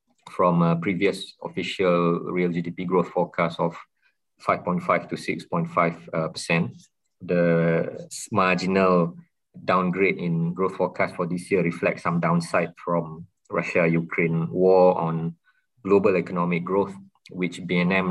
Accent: Malaysian